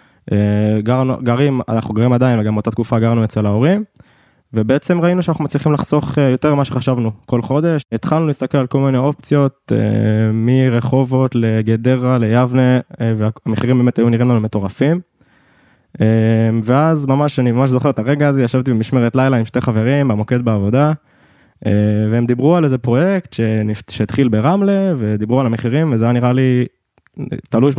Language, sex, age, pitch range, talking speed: Hebrew, male, 20-39, 110-135 Hz, 145 wpm